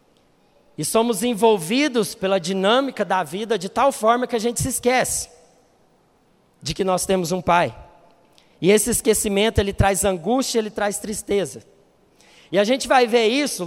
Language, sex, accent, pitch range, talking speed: Portuguese, male, Brazilian, 195-235 Hz, 160 wpm